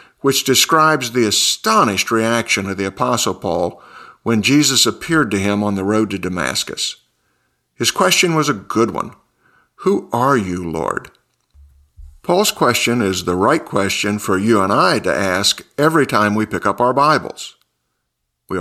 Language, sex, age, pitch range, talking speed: English, male, 50-69, 100-130 Hz, 160 wpm